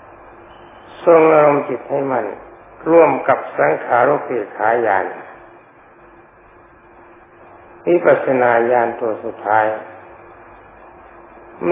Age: 60-79